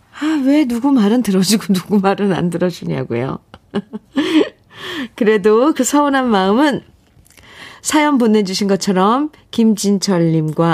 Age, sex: 40-59, female